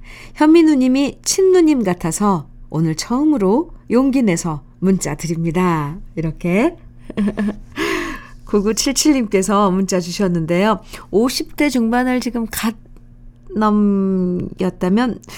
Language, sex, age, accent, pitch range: Korean, female, 50-69, native, 150-230 Hz